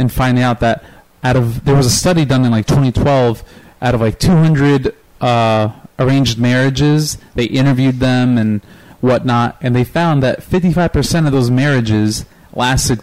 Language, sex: English, male